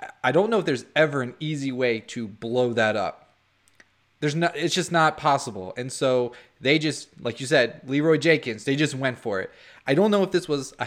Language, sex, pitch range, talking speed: English, male, 115-145 Hz, 220 wpm